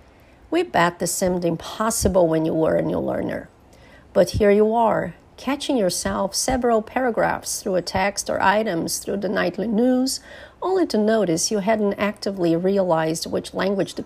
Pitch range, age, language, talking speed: 180-245 Hz, 50-69, English, 160 wpm